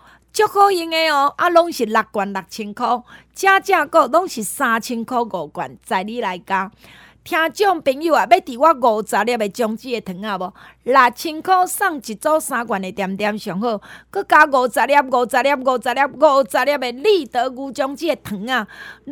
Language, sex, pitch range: Chinese, female, 215-300 Hz